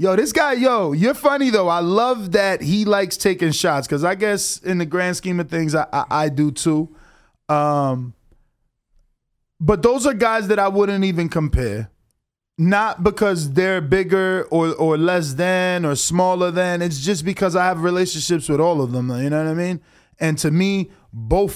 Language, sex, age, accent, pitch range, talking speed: English, male, 20-39, American, 150-185 Hz, 190 wpm